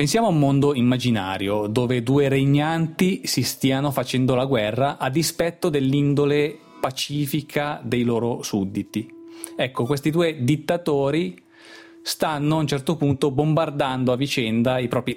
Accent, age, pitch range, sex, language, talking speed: native, 30-49, 125-155 Hz, male, Italian, 135 wpm